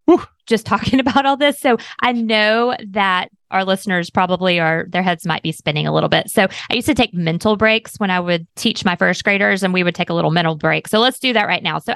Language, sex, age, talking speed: English, female, 20-39, 250 wpm